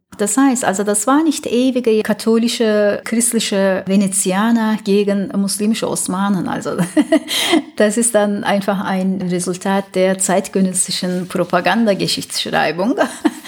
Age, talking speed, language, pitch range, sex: 30-49, 100 wpm, German, 200-270 Hz, female